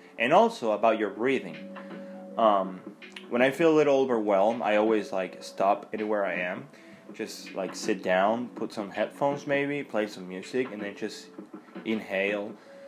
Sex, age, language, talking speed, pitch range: male, 20-39, English, 160 wpm, 110-175 Hz